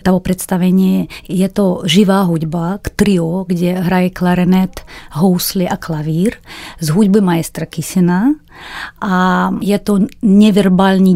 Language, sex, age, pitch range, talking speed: Czech, female, 30-49, 170-195 Hz, 115 wpm